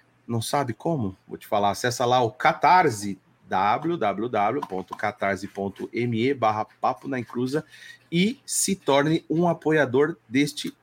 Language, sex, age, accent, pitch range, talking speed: Portuguese, male, 30-49, Brazilian, 115-155 Hz, 115 wpm